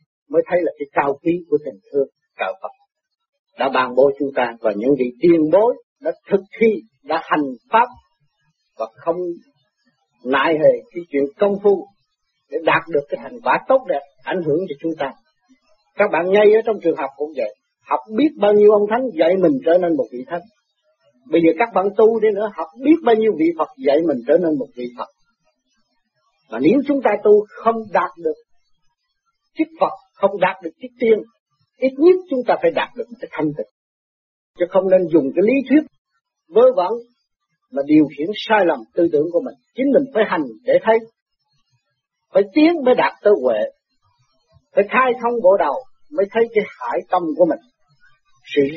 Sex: male